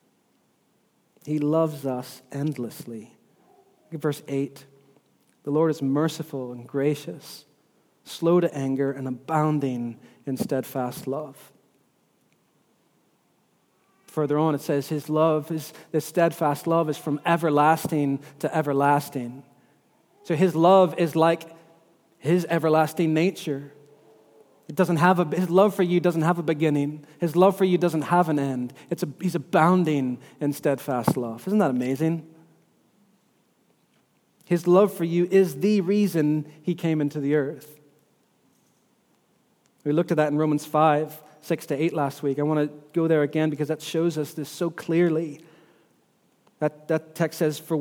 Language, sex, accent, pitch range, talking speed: English, male, American, 145-170 Hz, 145 wpm